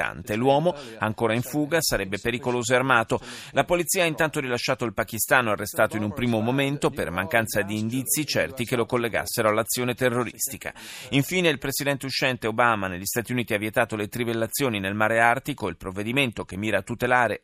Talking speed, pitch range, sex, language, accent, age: 175 wpm, 115-145 Hz, male, Italian, native, 30-49